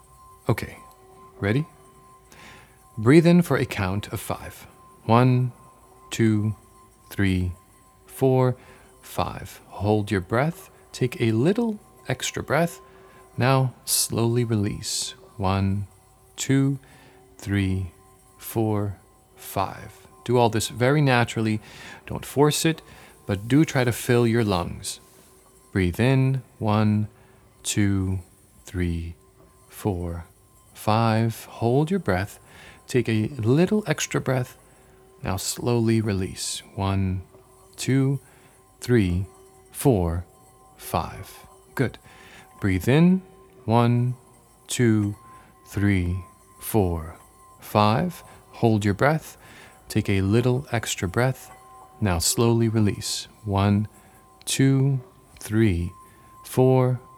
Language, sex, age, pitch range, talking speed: English, male, 40-59, 95-130 Hz, 95 wpm